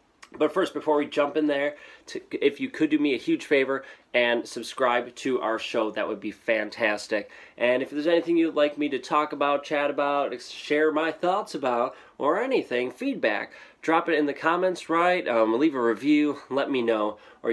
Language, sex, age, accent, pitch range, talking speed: English, male, 20-39, American, 115-165 Hz, 195 wpm